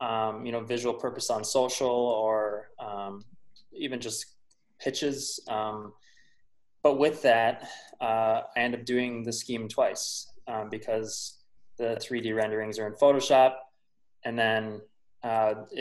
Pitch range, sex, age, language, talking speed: 110-125 Hz, male, 20-39, English, 135 wpm